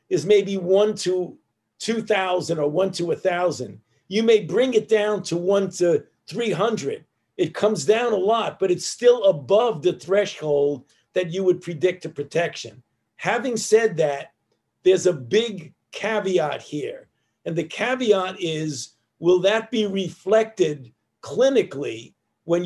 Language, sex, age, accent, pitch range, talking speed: English, male, 50-69, American, 170-210 Hz, 145 wpm